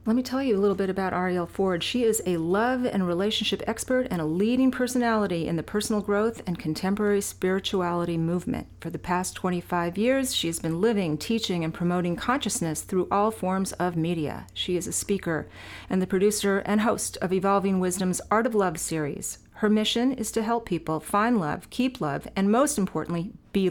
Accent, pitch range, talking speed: American, 175-215 Hz, 195 wpm